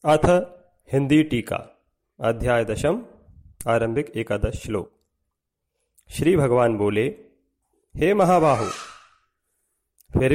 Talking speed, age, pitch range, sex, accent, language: 80 wpm, 40-59, 115-175 Hz, male, native, Hindi